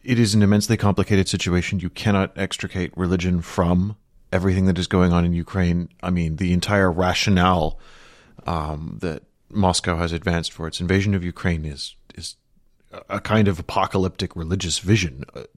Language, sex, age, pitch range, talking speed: English, male, 30-49, 80-100 Hz, 160 wpm